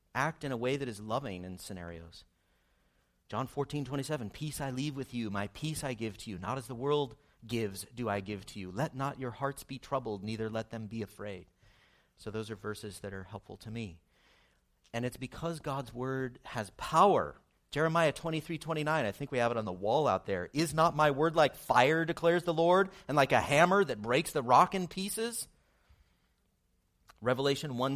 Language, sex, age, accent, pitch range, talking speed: English, male, 30-49, American, 110-150 Hz, 200 wpm